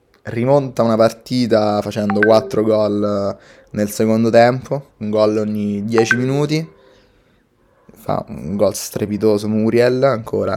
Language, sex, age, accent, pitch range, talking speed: Italian, male, 20-39, native, 105-115 Hz, 115 wpm